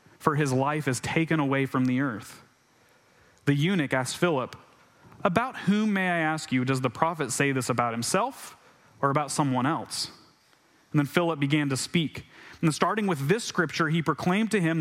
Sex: male